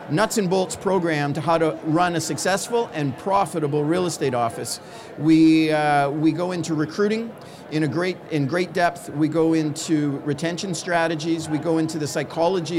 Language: English